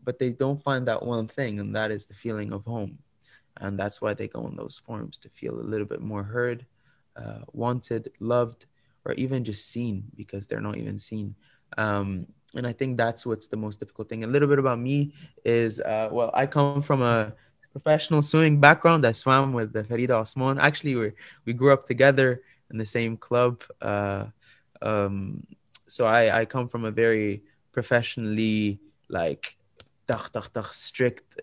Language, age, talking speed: English, 20-39, 180 wpm